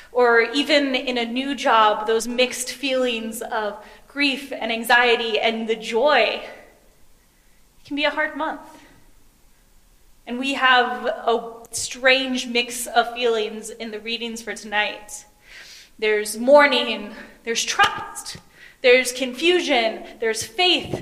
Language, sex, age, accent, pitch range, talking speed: English, female, 10-29, American, 225-285 Hz, 120 wpm